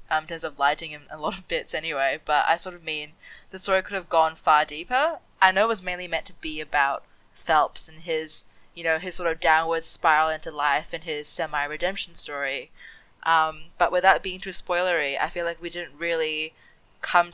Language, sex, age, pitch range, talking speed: English, female, 20-39, 160-190 Hz, 210 wpm